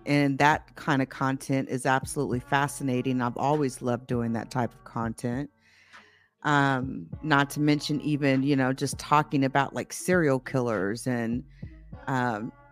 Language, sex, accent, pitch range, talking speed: English, female, American, 135-155 Hz, 145 wpm